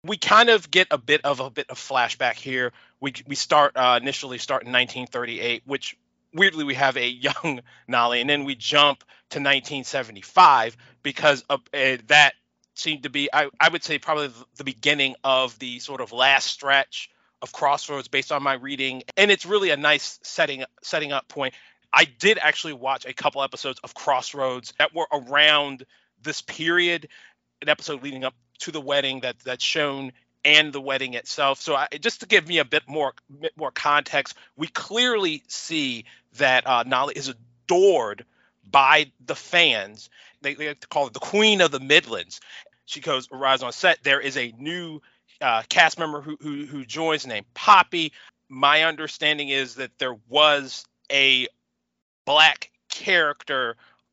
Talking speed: 175 wpm